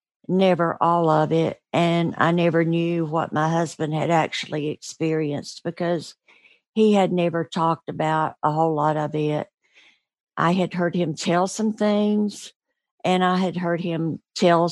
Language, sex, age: English, female, 60-79